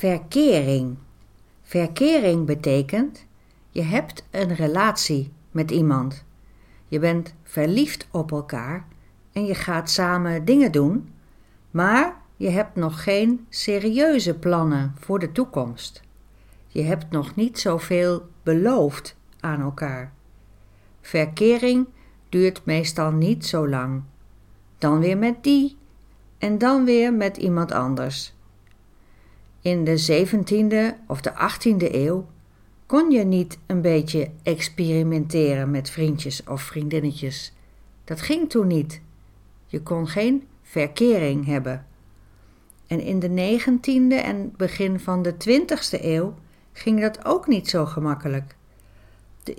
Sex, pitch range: female, 135-200 Hz